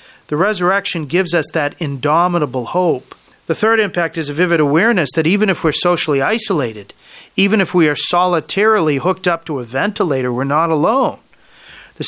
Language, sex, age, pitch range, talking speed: English, male, 40-59, 150-190 Hz, 170 wpm